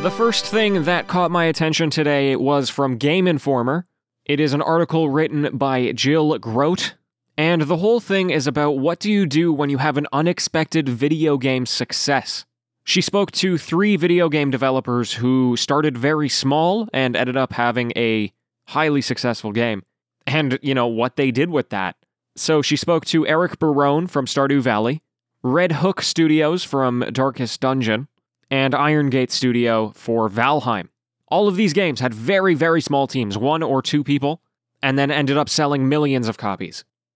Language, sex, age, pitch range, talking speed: English, male, 20-39, 130-165 Hz, 175 wpm